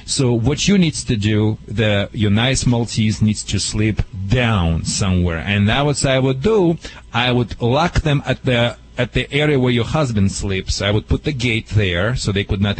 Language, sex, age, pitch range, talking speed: English, male, 40-59, 110-175 Hz, 205 wpm